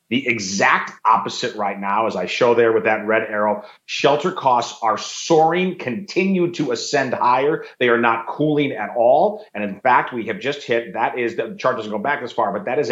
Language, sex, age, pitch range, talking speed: English, male, 30-49, 110-150 Hz, 215 wpm